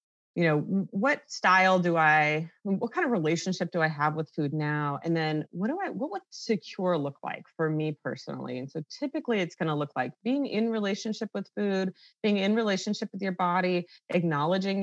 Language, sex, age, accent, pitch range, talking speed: English, female, 30-49, American, 145-185 Hz, 195 wpm